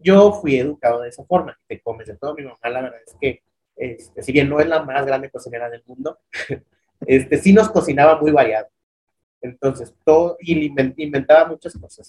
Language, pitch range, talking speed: Spanish, 120-165 Hz, 200 wpm